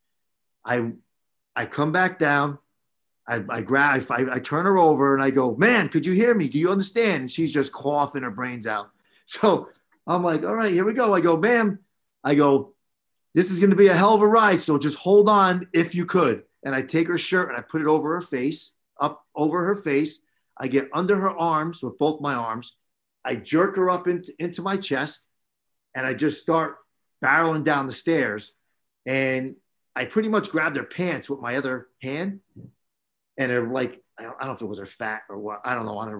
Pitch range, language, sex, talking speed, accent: 130-175 Hz, English, male, 215 wpm, American